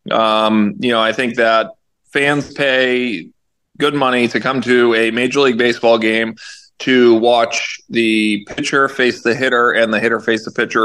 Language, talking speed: English, 170 wpm